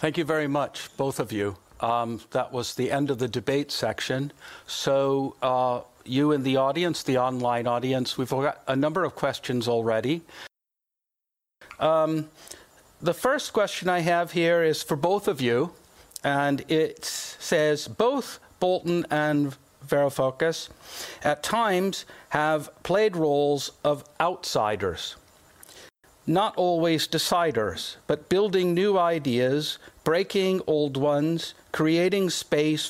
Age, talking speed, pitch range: 50-69, 130 wpm, 125-160 Hz